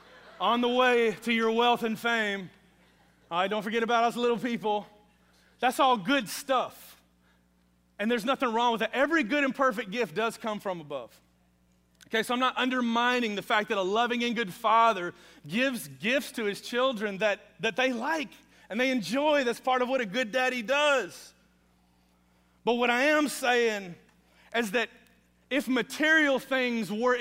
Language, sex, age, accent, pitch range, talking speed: English, male, 30-49, American, 185-255 Hz, 175 wpm